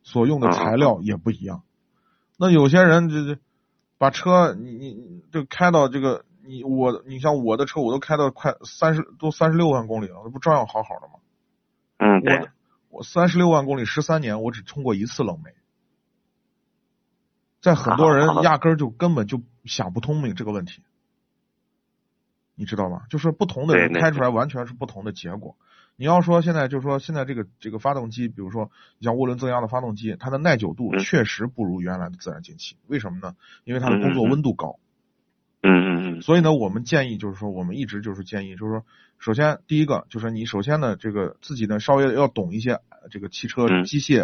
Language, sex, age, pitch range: Chinese, male, 30-49, 110-165 Hz